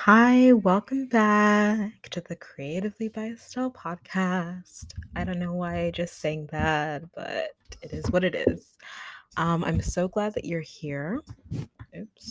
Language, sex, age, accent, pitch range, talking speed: English, female, 20-39, American, 150-185 Hz, 150 wpm